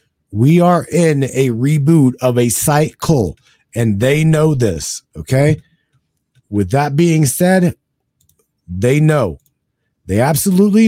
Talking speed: 115 wpm